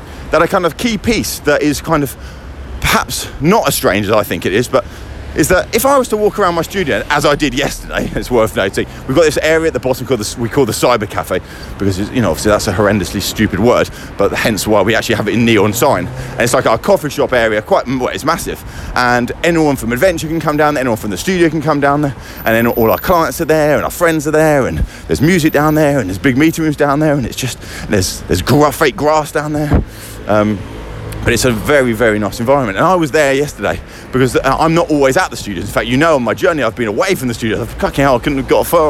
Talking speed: 260 wpm